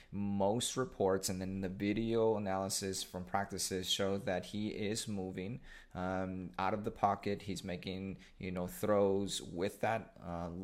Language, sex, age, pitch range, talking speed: English, male, 30-49, 95-105 Hz, 150 wpm